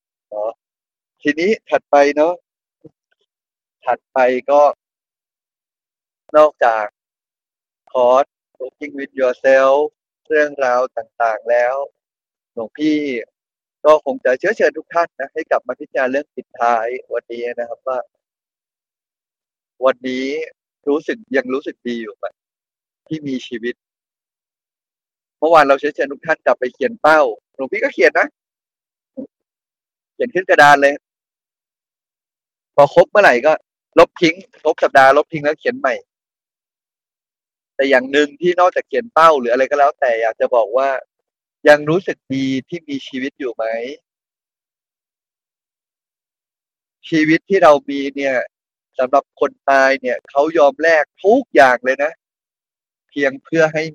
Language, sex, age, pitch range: Thai, male, 20-39, 130-155 Hz